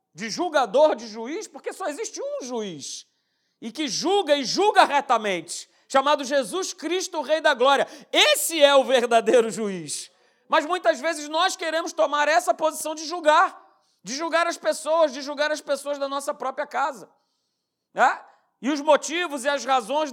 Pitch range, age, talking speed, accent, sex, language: 260-335 Hz, 40-59, 165 wpm, Brazilian, male, Portuguese